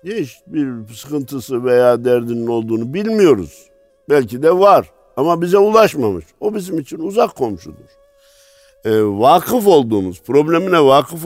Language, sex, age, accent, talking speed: Turkish, male, 60-79, native, 115 wpm